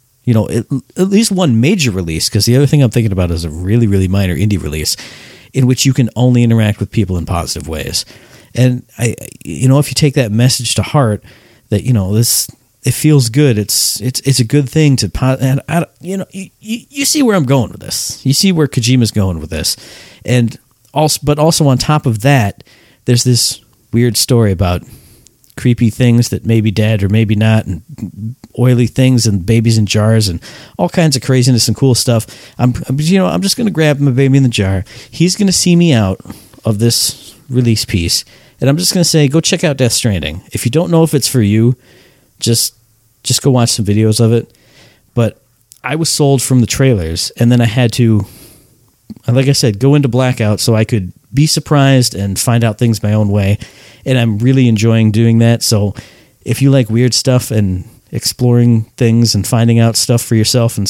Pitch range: 110-135 Hz